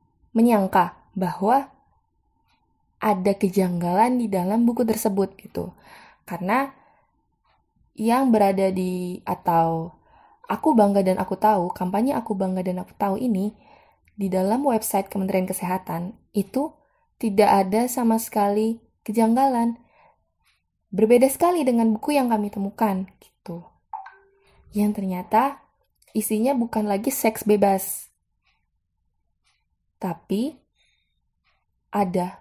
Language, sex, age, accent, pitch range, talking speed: Indonesian, female, 20-39, native, 190-240 Hz, 100 wpm